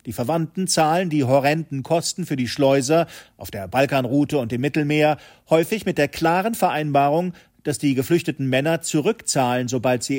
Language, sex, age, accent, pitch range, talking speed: German, male, 40-59, German, 130-165 Hz, 160 wpm